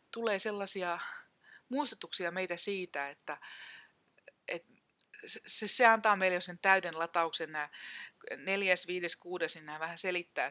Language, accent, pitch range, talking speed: Finnish, native, 165-225 Hz, 130 wpm